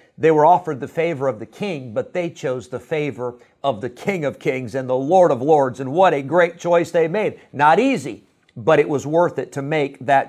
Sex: male